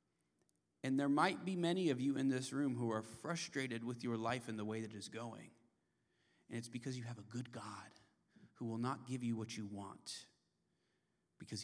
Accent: American